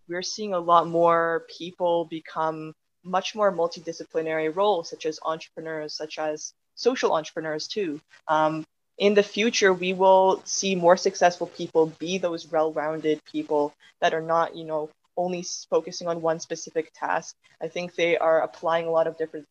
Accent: American